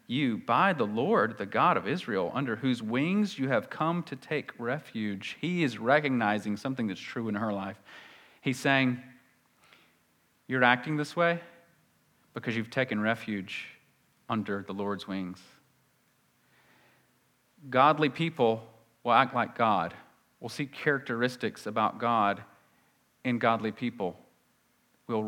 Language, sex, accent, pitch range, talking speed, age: English, male, American, 115-155 Hz, 130 wpm, 40-59